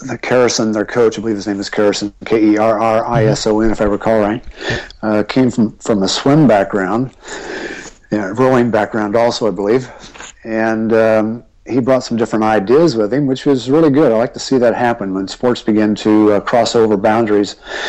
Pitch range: 105-125 Hz